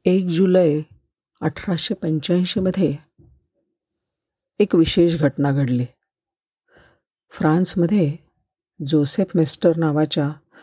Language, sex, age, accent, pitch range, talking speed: Marathi, female, 50-69, native, 155-195 Hz, 70 wpm